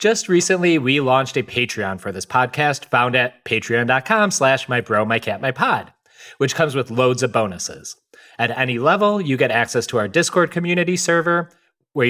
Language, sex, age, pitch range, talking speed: English, male, 30-49, 115-170 Hz, 175 wpm